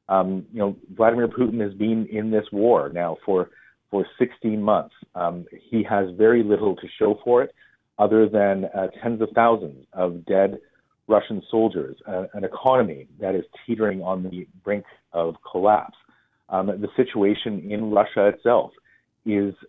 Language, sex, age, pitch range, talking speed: English, male, 40-59, 95-110 Hz, 160 wpm